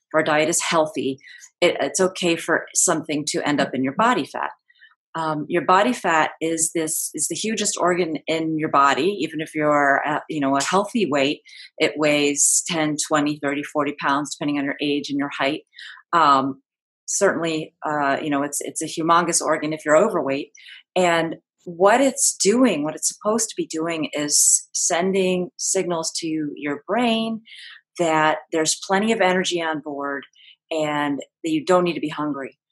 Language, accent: English, American